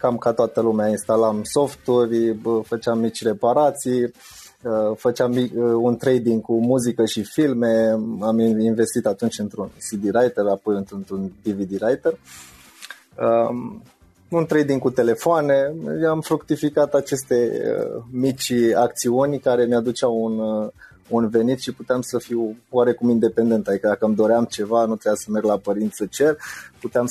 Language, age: Romanian, 20-39